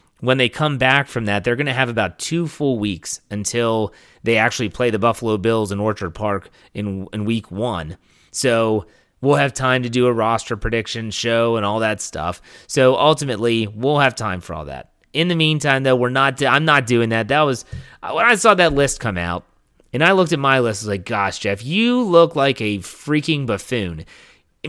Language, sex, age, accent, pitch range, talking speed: English, male, 30-49, American, 105-145 Hz, 210 wpm